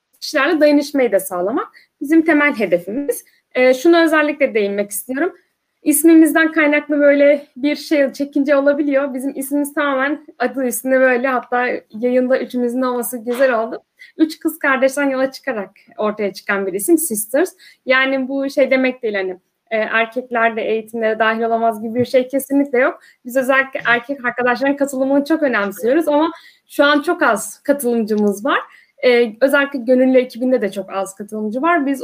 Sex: female